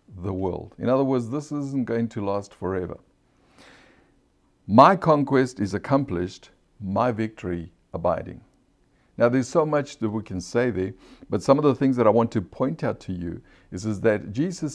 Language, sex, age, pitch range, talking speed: English, male, 60-79, 95-135 Hz, 180 wpm